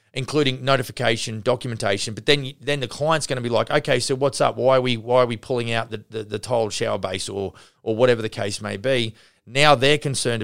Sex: male